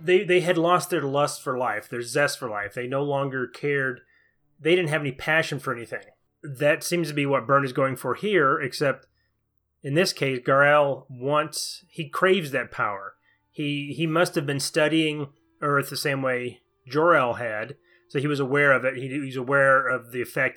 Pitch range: 130-165 Hz